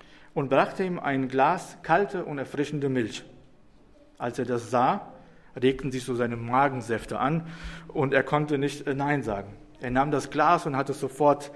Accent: German